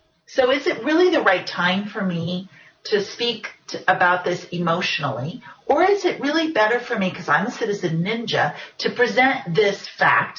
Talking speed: 180 wpm